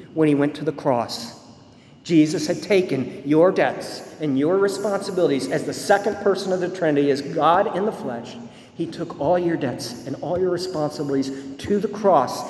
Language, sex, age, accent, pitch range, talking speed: English, male, 50-69, American, 155-215 Hz, 185 wpm